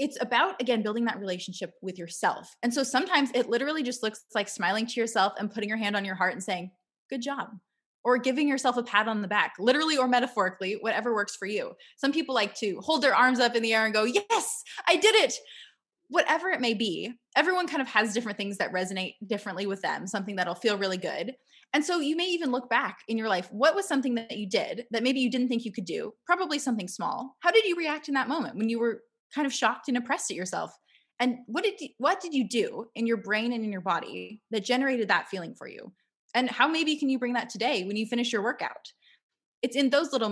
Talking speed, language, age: 245 wpm, English, 20-39